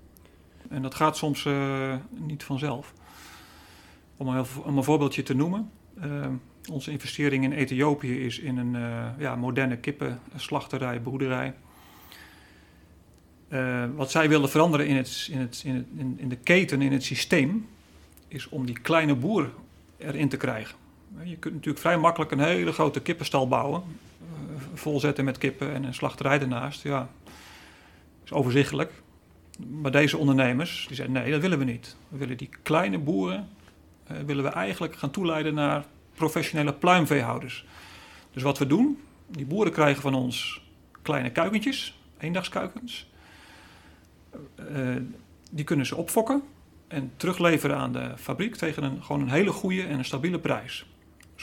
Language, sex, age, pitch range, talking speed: Dutch, male, 40-59, 130-155 Hz, 145 wpm